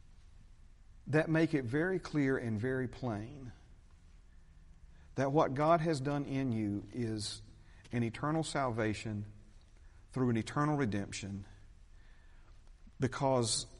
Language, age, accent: English, 50-69, American